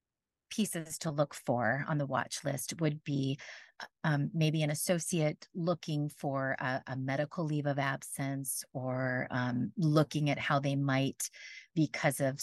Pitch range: 140-180 Hz